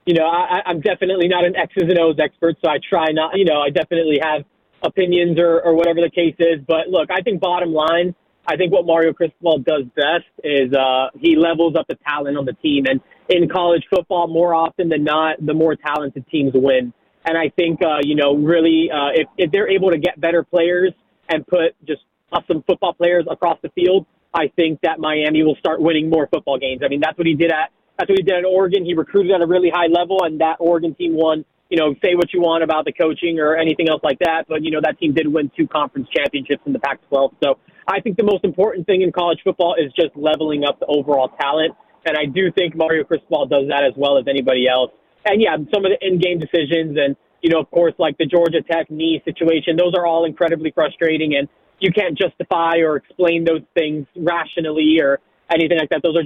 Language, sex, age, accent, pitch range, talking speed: English, male, 20-39, American, 150-175 Hz, 230 wpm